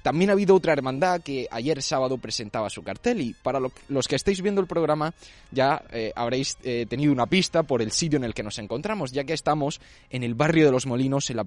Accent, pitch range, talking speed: Spanish, 125-160 Hz, 235 wpm